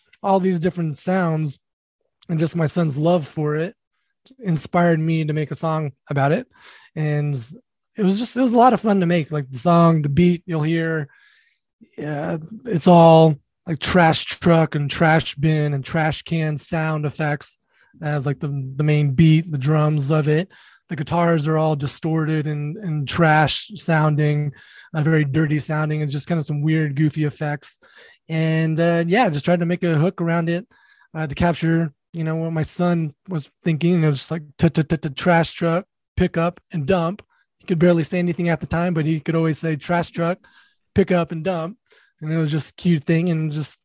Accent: American